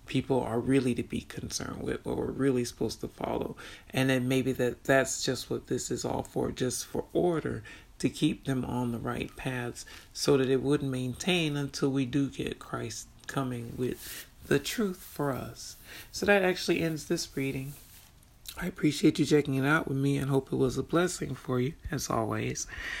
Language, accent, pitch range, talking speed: English, American, 130-155 Hz, 195 wpm